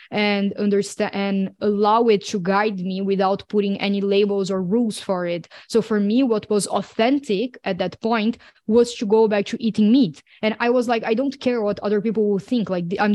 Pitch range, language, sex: 190-220 Hz, English, female